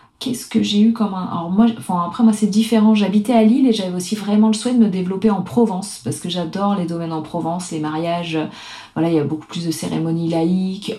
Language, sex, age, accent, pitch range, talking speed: French, female, 30-49, French, 155-210 Hz, 245 wpm